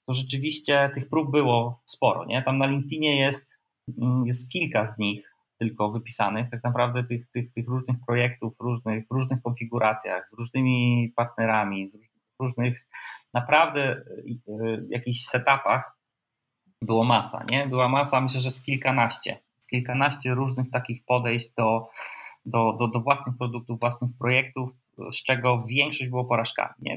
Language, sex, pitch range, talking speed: Polish, male, 115-125 Hz, 135 wpm